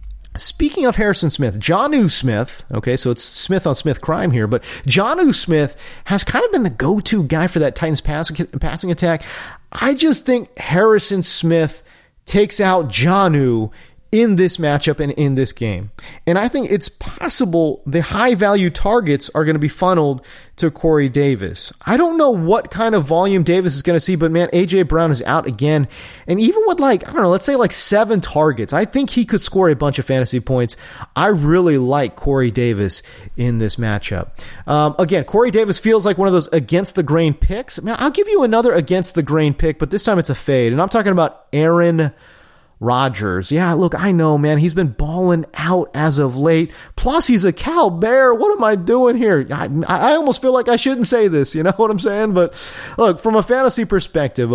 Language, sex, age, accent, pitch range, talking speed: English, male, 30-49, American, 145-215 Hz, 200 wpm